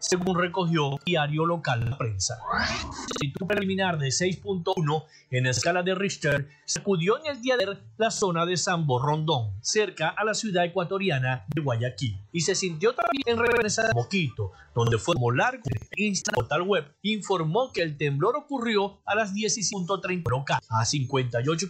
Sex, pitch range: male, 145-205 Hz